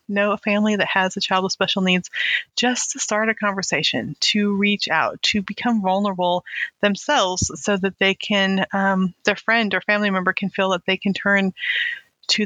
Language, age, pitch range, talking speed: English, 30-49, 190-235 Hz, 190 wpm